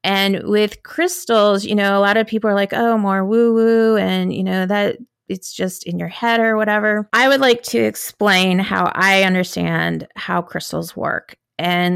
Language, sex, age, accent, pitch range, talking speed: English, female, 30-49, American, 180-215 Hz, 190 wpm